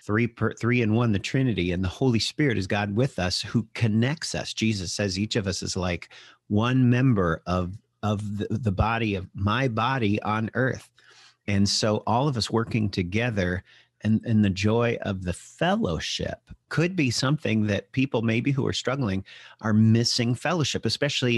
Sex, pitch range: male, 100-125 Hz